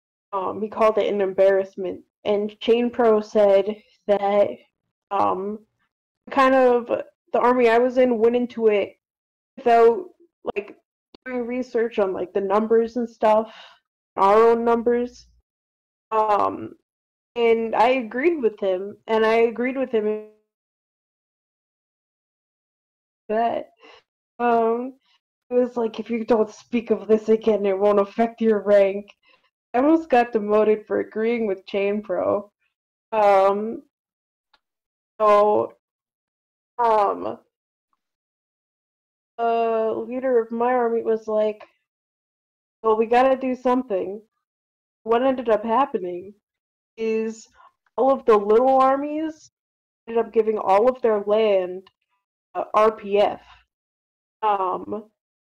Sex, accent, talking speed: female, American, 115 wpm